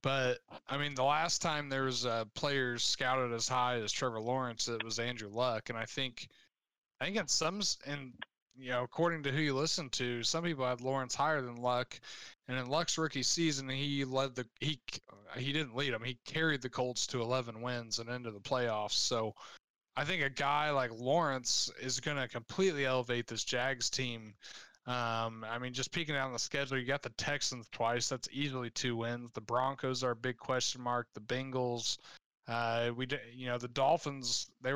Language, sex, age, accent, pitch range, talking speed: English, male, 20-39, American, 120-145 Hz, 200 wpm